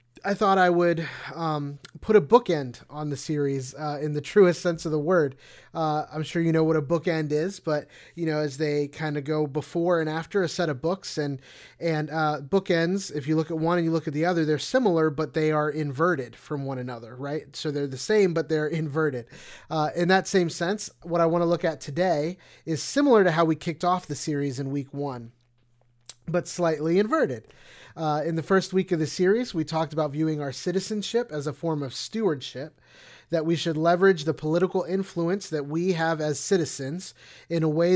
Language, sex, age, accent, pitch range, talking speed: English, male, 30-49, American, 140-170 Hz, 215 wpm